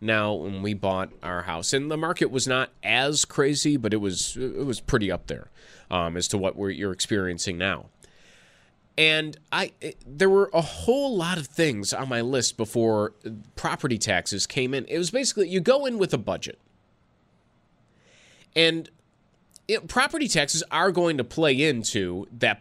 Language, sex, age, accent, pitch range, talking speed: English, male, 30-49, American, 110-170 Hz, 175 wpm